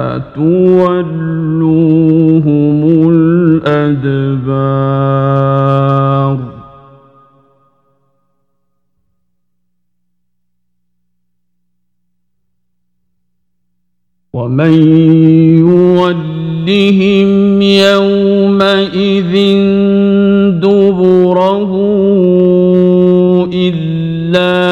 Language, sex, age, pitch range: Arabic, male, 50-69, 135-195 Hz